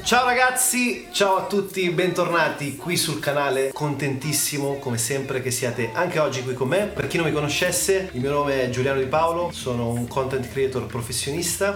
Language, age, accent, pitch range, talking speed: Italian, 30-49, native, 115-160 Hz, 185 wpm